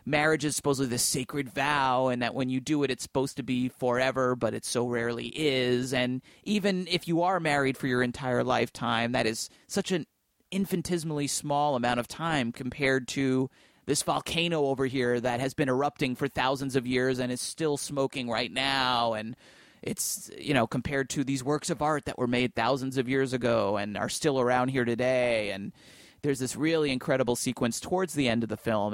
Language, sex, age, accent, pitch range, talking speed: English, male, 30-49, American, 120-140 Hz, 200 wpm